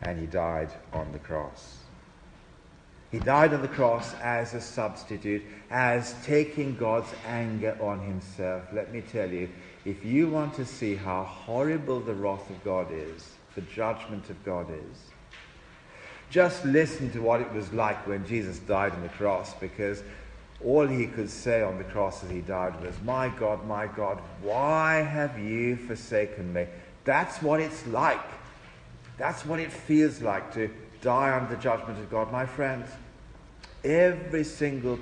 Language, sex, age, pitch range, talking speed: English, male, 50-69, 95-135 Hz, 165 wpm